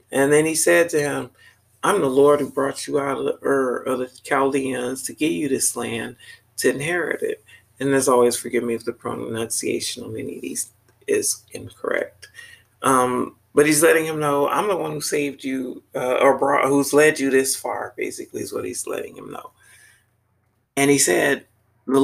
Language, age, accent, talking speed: English, 40-59, American, 195 wpm